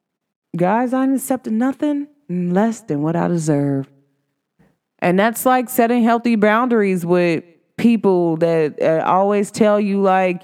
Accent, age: American, 20-39